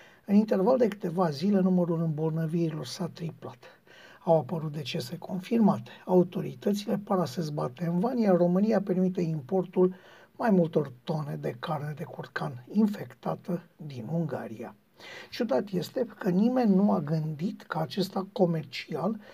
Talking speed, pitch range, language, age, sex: 135 wpm, 165-200 Hz, Romanian, 50-69, male